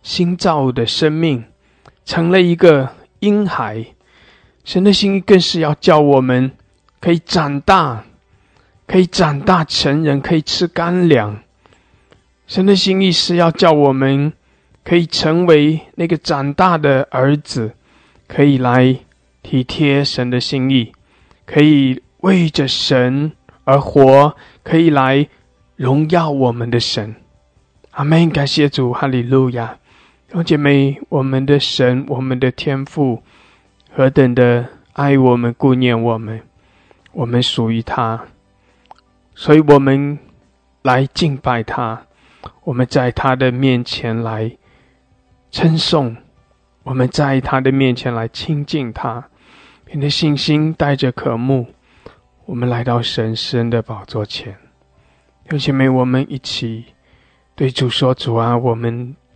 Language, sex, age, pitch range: English, male, 20-39, 120-155 Hz